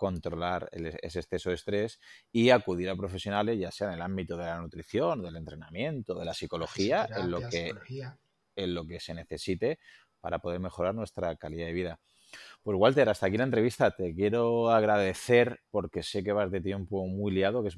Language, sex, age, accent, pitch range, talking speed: Spanish, male, 30-49, Spanish, 90-110 Hz, 190 wpm